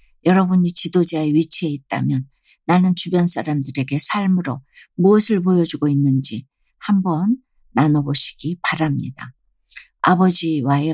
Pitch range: 150-190 Hz